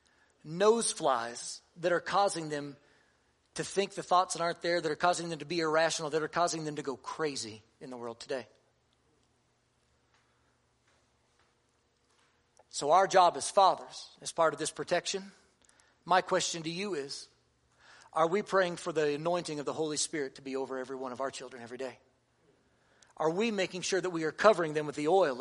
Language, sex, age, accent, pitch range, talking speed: English, male, 40-59, American, 135-180 Hz, 185 wpm